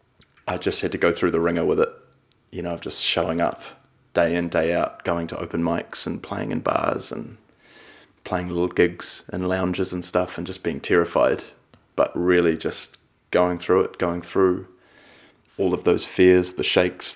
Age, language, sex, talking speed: 20-39, English, male, 190 wpm